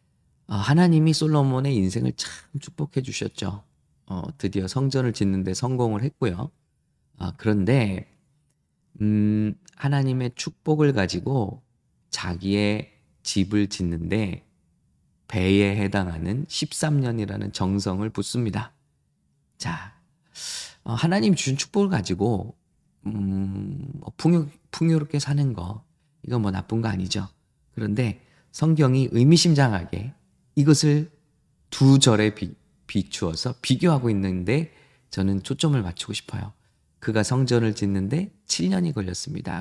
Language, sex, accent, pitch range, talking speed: English, male, Korean, 100-145 Hz, 90 wpm